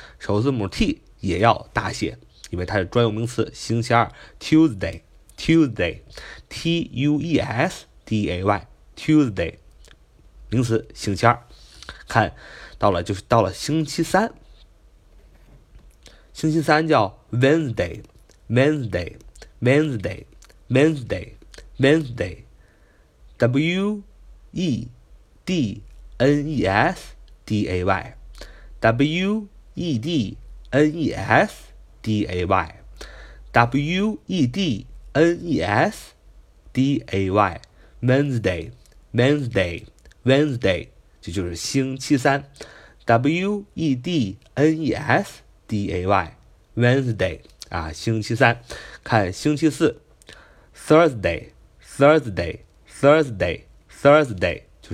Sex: male